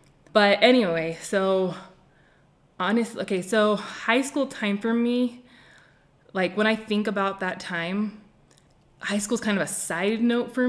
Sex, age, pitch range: female, 20-39, 165-205 Hz